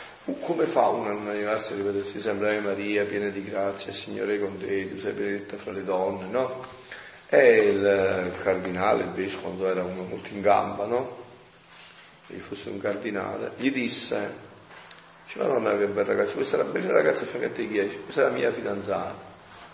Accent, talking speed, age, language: native, 175 wpm, 40-59, Italian